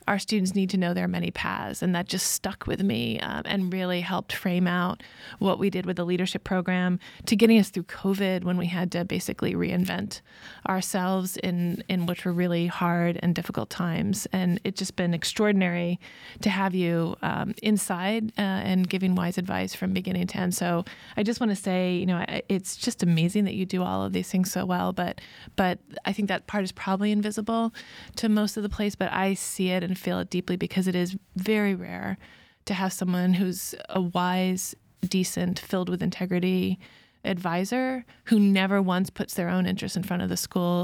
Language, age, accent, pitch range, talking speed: English, 20-39, American, 180-195 Hz, 200 wpm